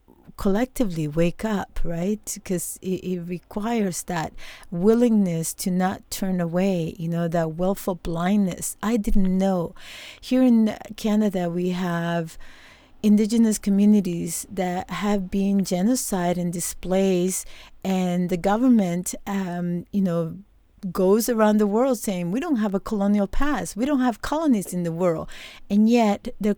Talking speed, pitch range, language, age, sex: 140 wpm, 175-215 Hz, English, 40-59, female